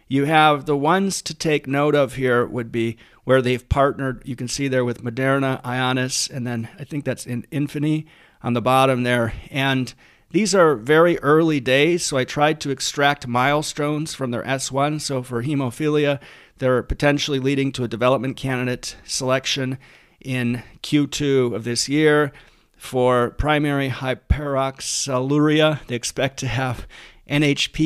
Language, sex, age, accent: English, male, 40-59, American